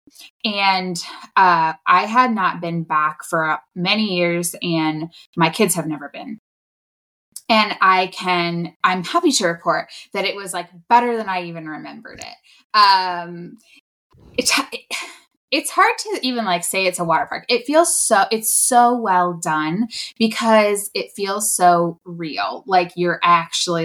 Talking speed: 155 wpm